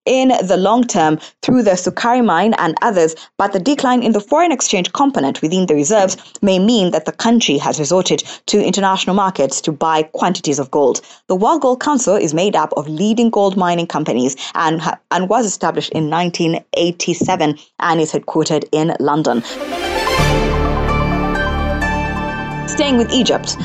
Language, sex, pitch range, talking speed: English, female, 160-235 Hz, 155 wpm